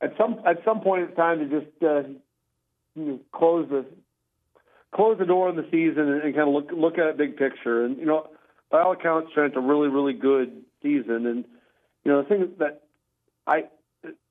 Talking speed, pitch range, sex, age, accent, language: 205 wpm, 125-165 Hz, male, 40-59, American, English